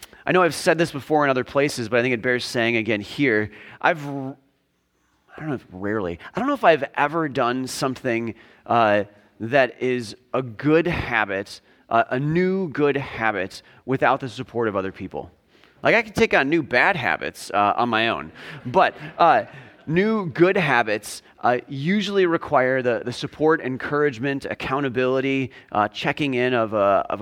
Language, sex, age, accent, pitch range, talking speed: English, male, 30-49, American, 115-150 Hz, 175 wpm